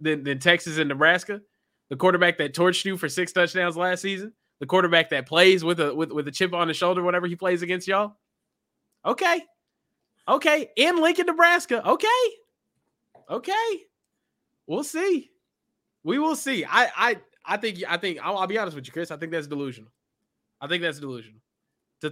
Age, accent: 20-39, American